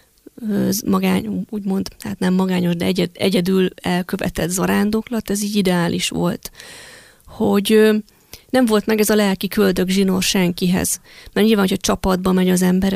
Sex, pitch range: female, 185-215 Hz